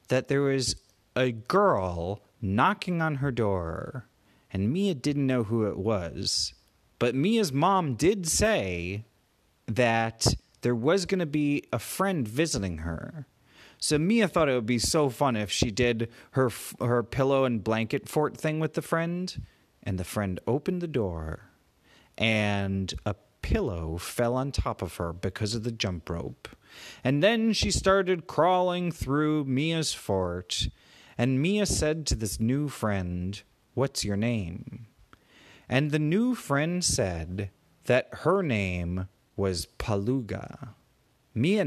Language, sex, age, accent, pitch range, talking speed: English, male, 30-49, American, 100-145 Hz, 145 wpm